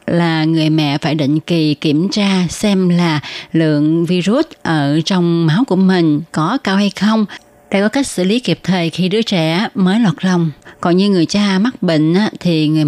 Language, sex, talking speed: Vietnamese, female, 195 wpm